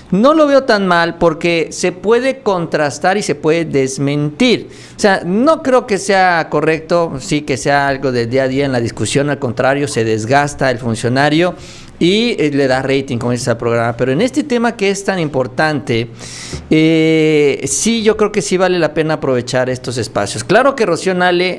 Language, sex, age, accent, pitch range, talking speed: Spanish, male, 50-69, Mexican, 140-210 Hz, 190 wpm